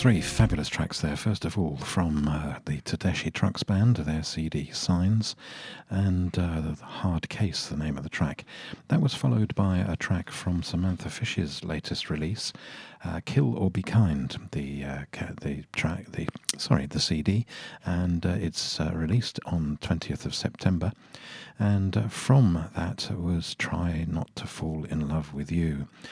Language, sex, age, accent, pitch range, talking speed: English, male, 50-69, British, 80-100 Hz, 165 wpm